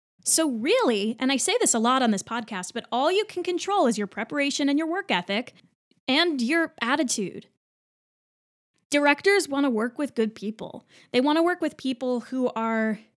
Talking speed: 185 wpm